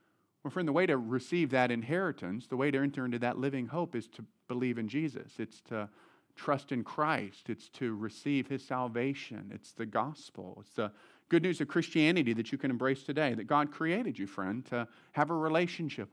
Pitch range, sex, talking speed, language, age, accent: 125-165 Hz, male, 200 wpm, English, 40-59, American